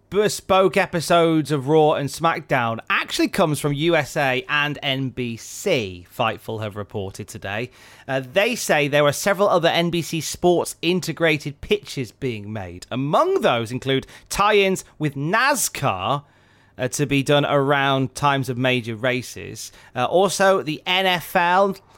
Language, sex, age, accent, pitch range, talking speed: English, male, 30-49, British, 125-175 Hz, 130 wpm